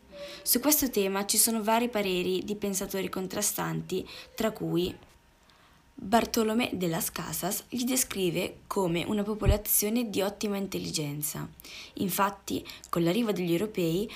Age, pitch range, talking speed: 20-39, 170-220 Hz, 125 wpm